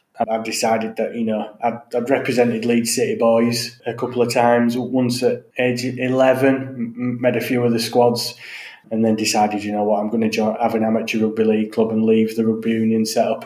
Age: 20-39